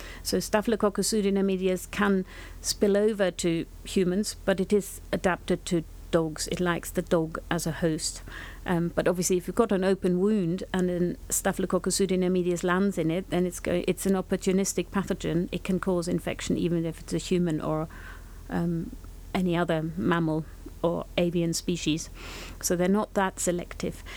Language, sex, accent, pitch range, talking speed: English, female, British, 175-195 Hz, 160 wpm